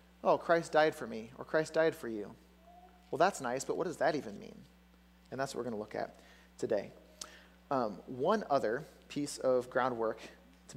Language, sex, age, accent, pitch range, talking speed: English, male, 30-49, American, 125-165 Hz, 195 wpm